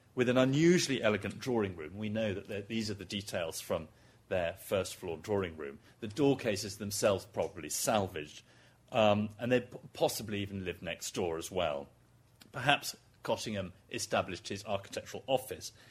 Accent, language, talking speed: British, English, 150 wpm